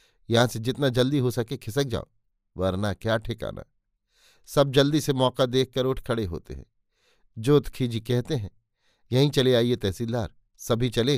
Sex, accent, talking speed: male, native, 160 wpm